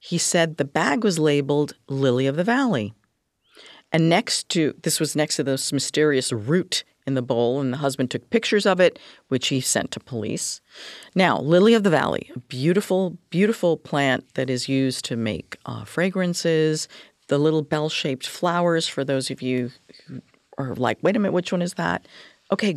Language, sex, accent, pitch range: English, female, American, 130-175 Hz